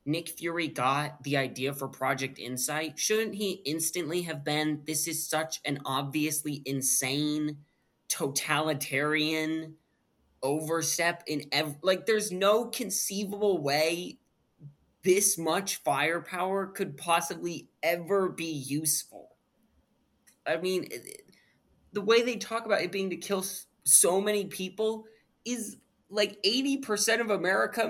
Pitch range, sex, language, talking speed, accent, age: 145-195 Hz, male, English, 120 wpm, American, 20-39